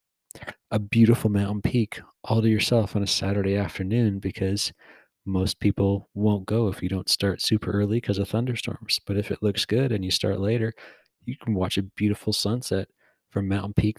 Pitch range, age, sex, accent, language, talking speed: 100-115 Hz, 40-59, male, American, English, 185 wpm